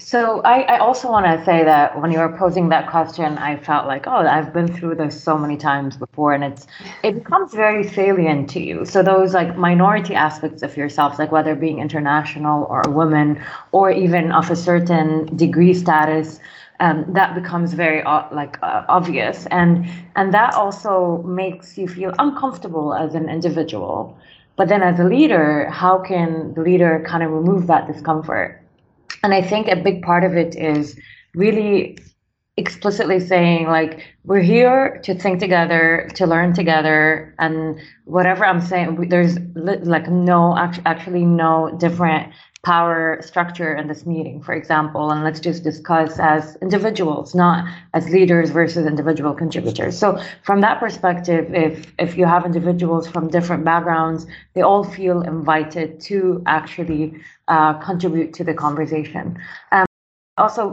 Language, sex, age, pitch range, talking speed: English, female, 30-49, 155-185 Hz, 160 wpm